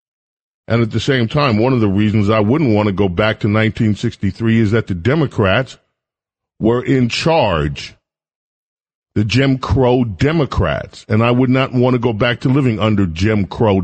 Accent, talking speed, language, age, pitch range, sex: American, 180 wpm, English, 40-59, 100-125 Hz, male